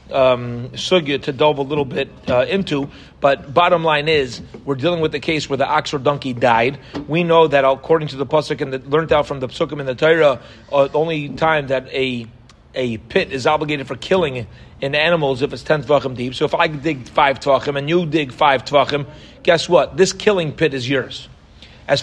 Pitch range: 130-160 Hz